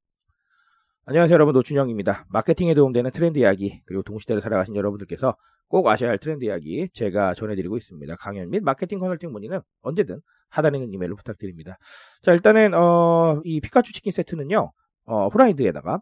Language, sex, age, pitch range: Korean, male, 40-59, 110-180 Hz